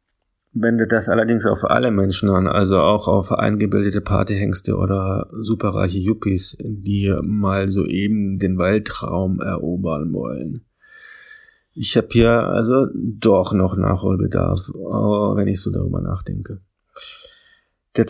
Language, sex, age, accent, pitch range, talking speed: German, male, 40-59, German, 95-115 Hz, 115 wpm